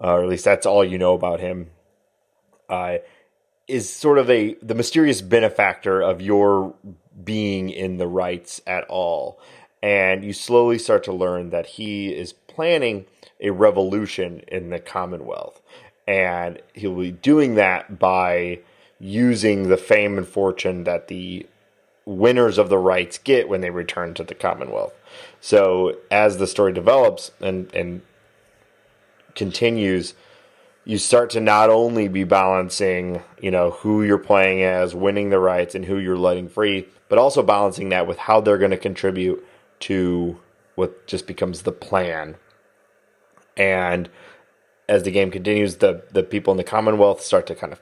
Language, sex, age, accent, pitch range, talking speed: English, male, 30-49, American, 90-110 Hz, 160 wpm